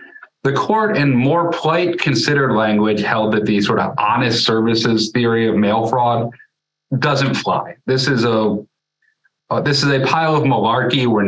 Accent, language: American, English